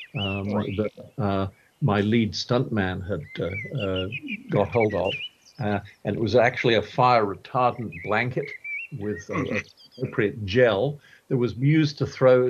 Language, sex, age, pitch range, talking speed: English, male, 50-69, 100-125 Hz, 140 wpm